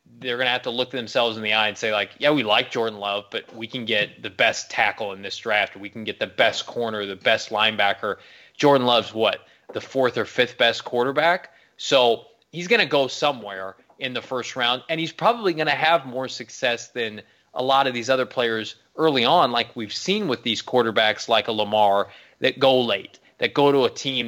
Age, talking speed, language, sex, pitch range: 20-39, 220 wpm, English, male, 110-135 Hz